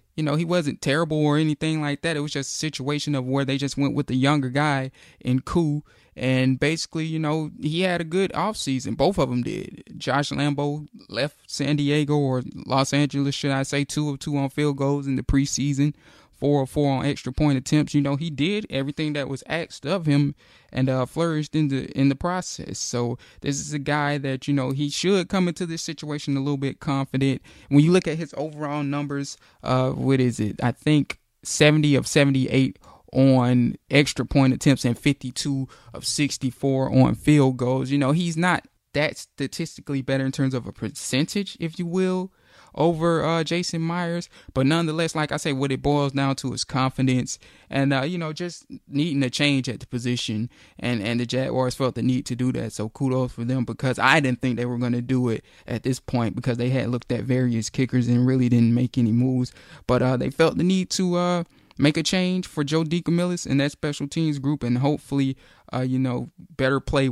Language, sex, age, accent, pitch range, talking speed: English, male, 20-39, American, 130-150 Hz, 210 wpm